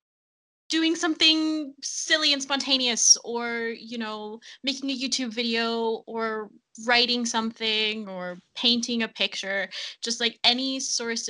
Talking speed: 120 wpm